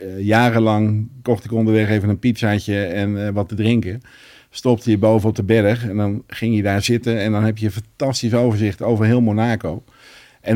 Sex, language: male, Dutch